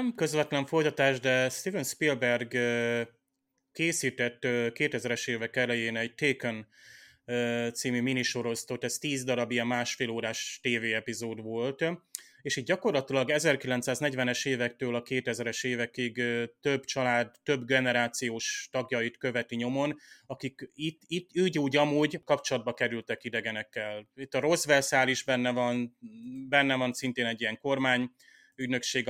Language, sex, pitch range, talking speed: Hungarian, male, 120-145 Hz, 125 wpm